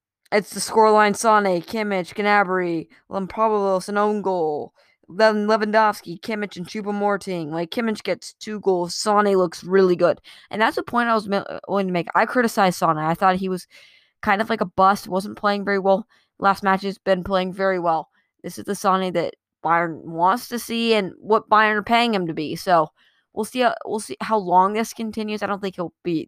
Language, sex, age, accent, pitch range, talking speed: English, female, 20-39, American, 175-210 Hz, 195 wpm